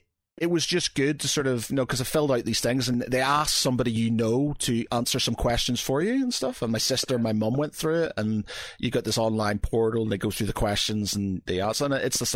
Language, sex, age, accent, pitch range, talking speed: English, male, 30-49, British, 100-125 Hz, 270 wpm